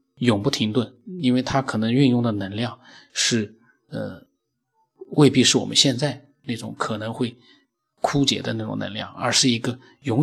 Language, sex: Chinese, male